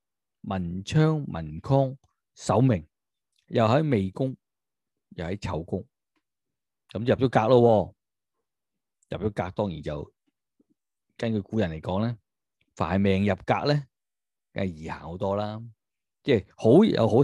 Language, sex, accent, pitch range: Chinese, male, native, 95-130 Hz